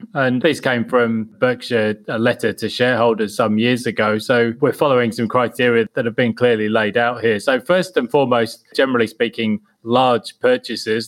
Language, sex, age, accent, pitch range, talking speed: English, male, 20-39, British, 110-130 Hz, 175 wpm